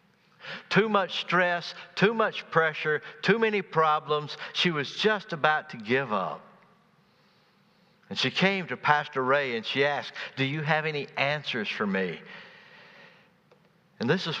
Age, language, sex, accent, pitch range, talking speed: 60-79, English, male, American, 145-195 Hz, 145 wpm